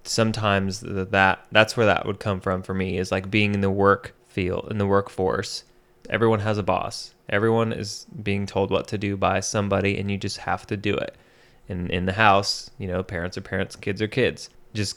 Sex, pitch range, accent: male, 95-105 Hz, American